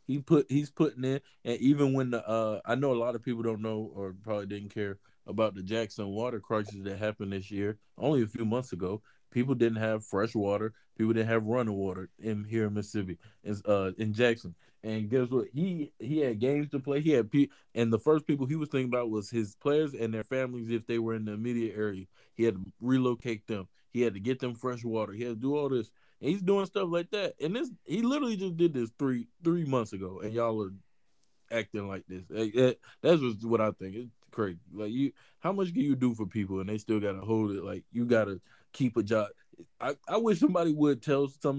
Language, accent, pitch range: English, American, 105-135 Hz